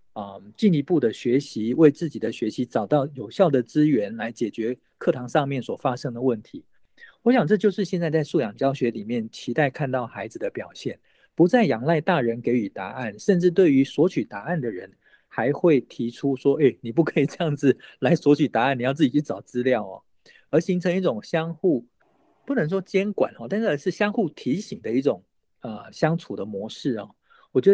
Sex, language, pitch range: male, Chinese, 125-185 Hz